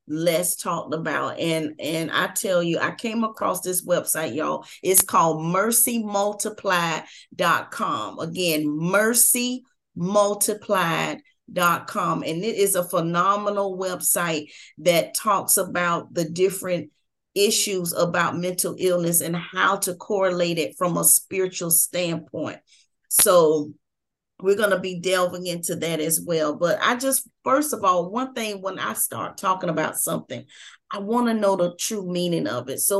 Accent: American